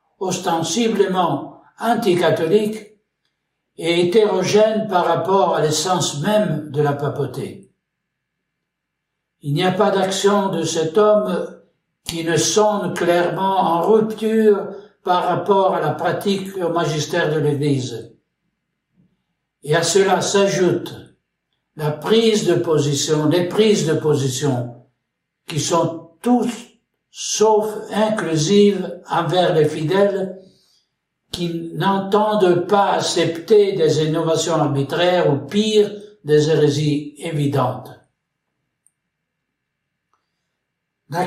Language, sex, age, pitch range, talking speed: French, male, 60-79, 160-205 Hz, 100 wpm